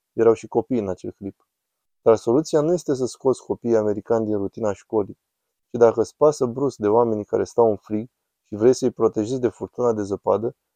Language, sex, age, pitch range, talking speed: Romanian, male, 20-39, 110-125 Hz, 205 wpm